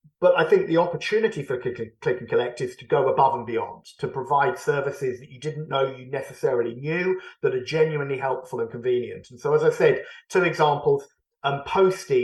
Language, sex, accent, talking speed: English, male, British, 195 wpm